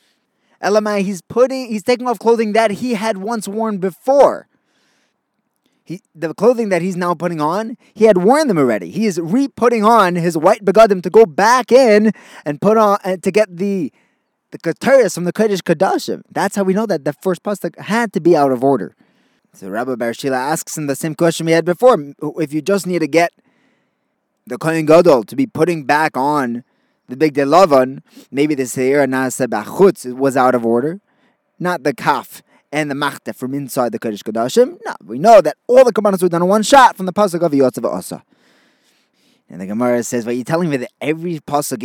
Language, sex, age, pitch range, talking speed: English, male, 20-39, 150-215 Hz, 200 wpm